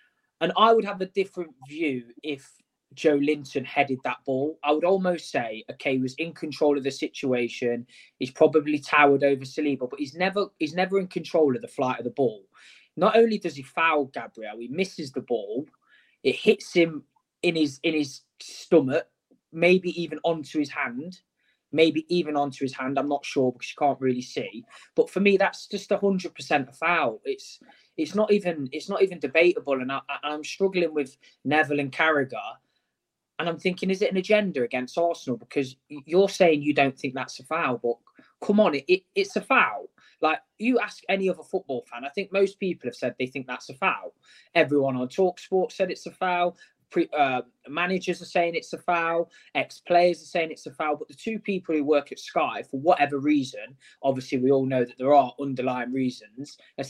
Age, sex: 20-39, male